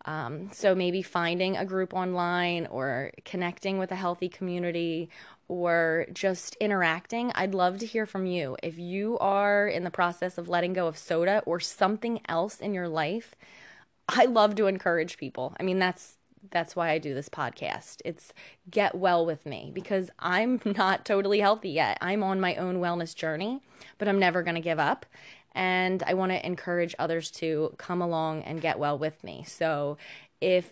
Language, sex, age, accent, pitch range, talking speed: English, female, 20-39, American, 165-195 Hz, 180 wpm